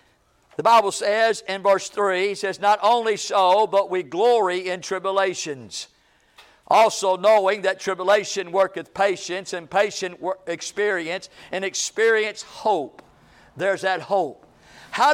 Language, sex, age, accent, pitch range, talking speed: English, male, 50-69, American, 205-290 Hz, 125 wpm